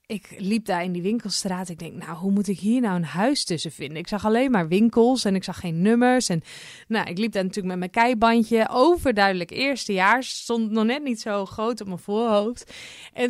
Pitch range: 205-250 Hz